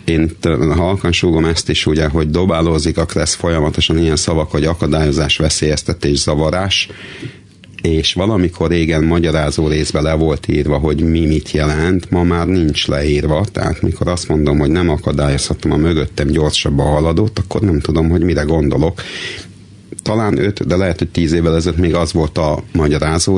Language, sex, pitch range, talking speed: Hungarian, male, 75-95 Hz, 160 wpm